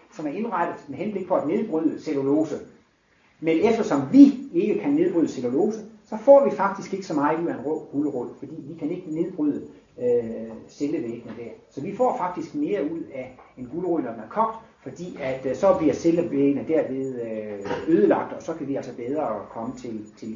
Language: Danish